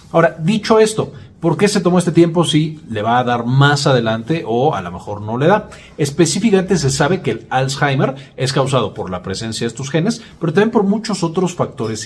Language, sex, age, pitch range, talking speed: Spanish, male, 40-59, 115-160 Hz, 215 wpm